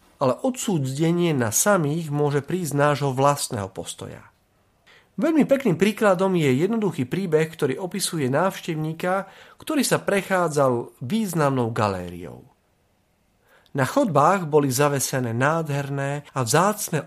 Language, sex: Slovak, male